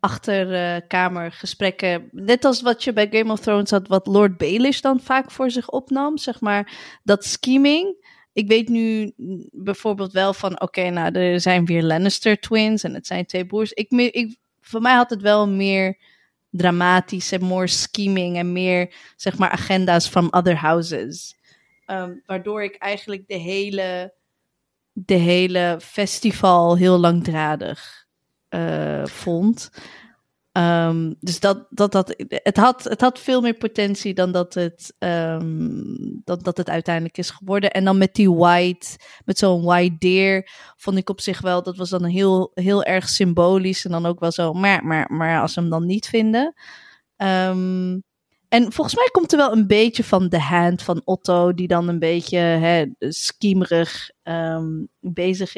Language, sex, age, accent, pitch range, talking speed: Dutch, female, 20-39, Dutch, 175-215 Hz, 165 wpm